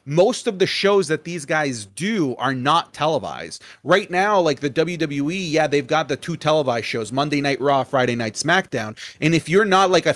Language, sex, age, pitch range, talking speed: English, male, 30-49, 135-185 Hz, 205 wpm